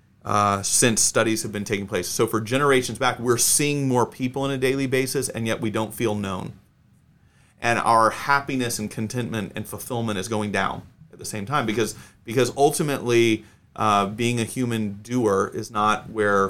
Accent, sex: American, male